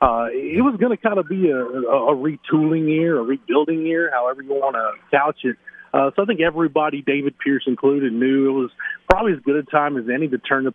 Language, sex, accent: English, male, American